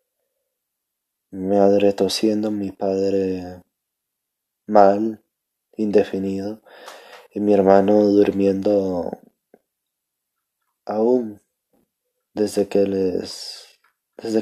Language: Spanish